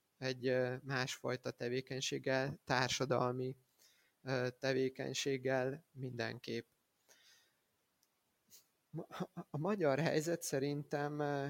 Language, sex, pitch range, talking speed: Hungarian, male, 125-140 Hz, 50 wpm